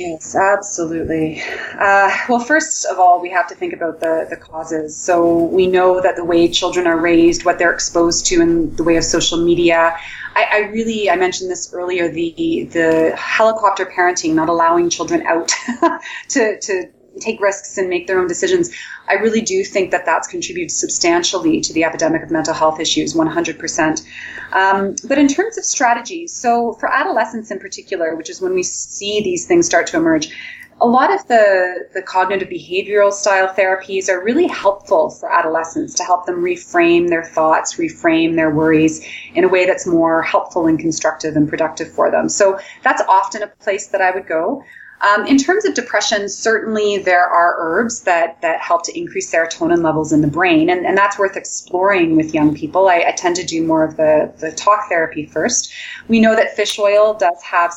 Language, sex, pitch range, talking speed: English, female, 170-245 Hz, 190 wpm